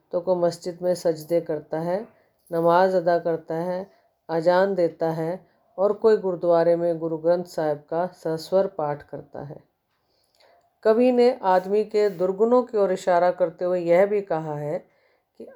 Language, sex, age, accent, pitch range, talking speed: Hindi, female, 40-59, native, 165-210 Hz, 160 wpm